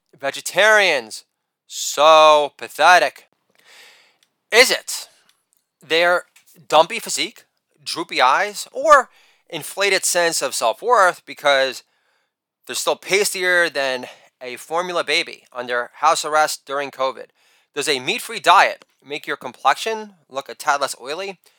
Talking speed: 110 wpm